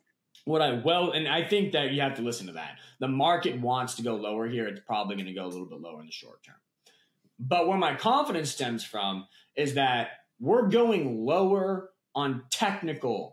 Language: English